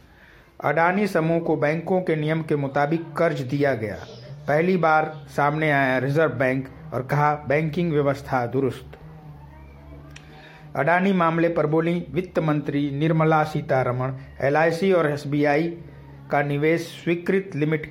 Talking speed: 125 wpm